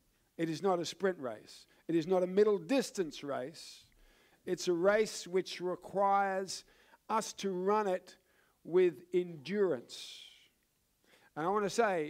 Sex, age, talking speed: male, 50-69, 145 wpm